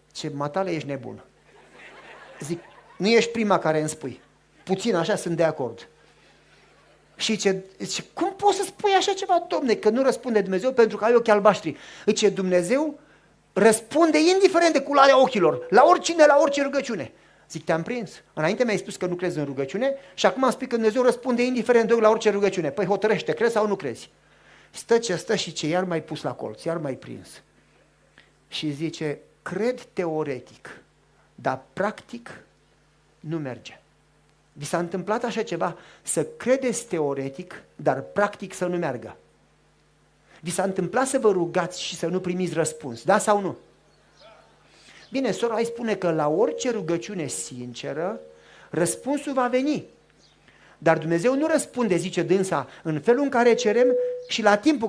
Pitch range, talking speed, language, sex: 165-245 Hz, 160 wpm, Romanian, male